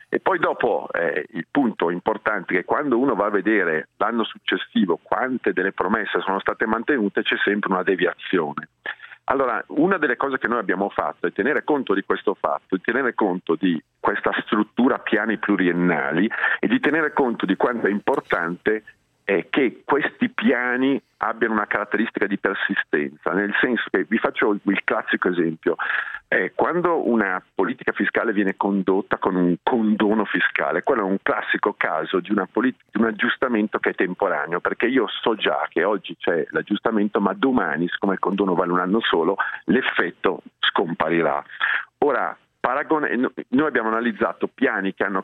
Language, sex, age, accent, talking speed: Italian, male, 50-69, native, 160 wpm